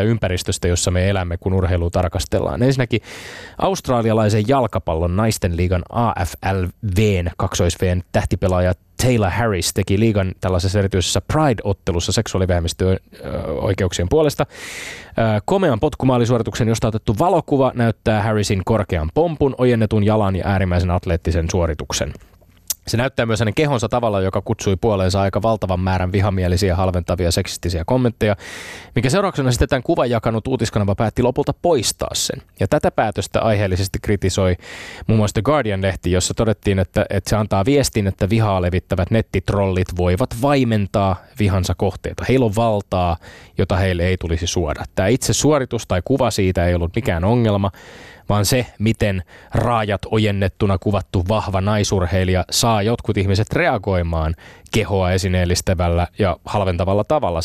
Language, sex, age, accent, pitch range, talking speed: Finnish, male, 20-39, native, 90-115 Hz, 130 wpm